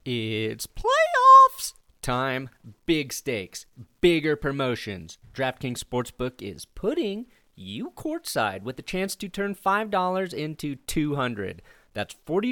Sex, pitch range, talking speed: male, 115-175 Hz, 110 wpm